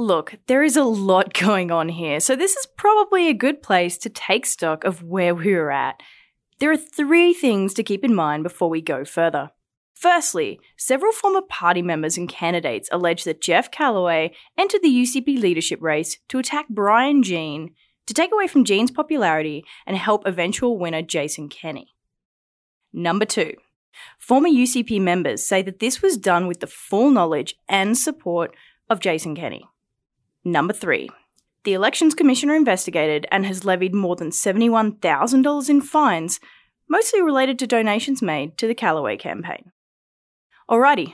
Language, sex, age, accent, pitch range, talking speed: English, female, 20-39, Australian, 170-265 Hz, 160 wpm